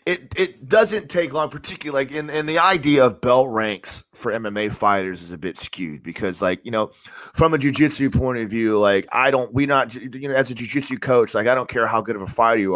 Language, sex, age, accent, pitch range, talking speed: English, male, 30-49, American, 115-155 Hz, 245 wpm